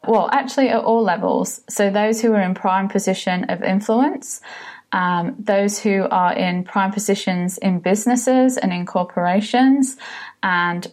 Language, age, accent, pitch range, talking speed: English, 20-39, British, 180-225 Hz, 150 wpm